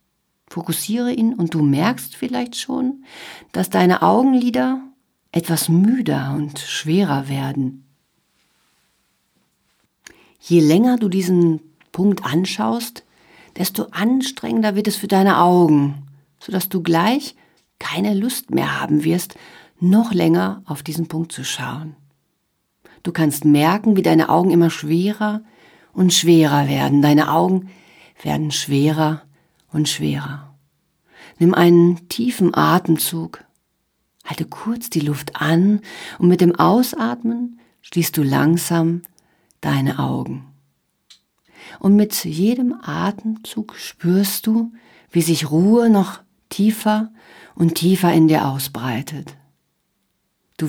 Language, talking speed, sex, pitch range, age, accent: German, 110 wpm, female, 150-200 Hz, 50-69, German